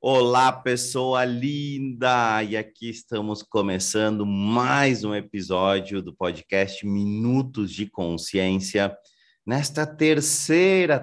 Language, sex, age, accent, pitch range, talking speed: Portuguese, male, 30-49, Brazilian, 110-150 Hz, 90 wpm